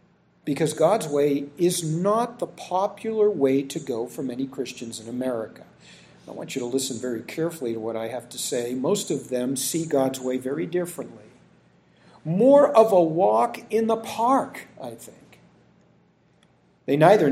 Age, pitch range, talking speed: 50-69, 130-200 Hz, 165 wpm